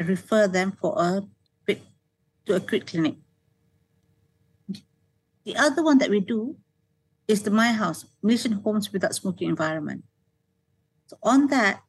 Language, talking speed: English, 135 wpm